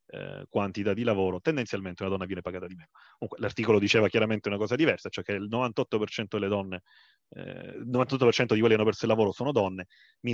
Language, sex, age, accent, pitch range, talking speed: Italian, male, 30-49, native, 105-135 Hz, 210 wpm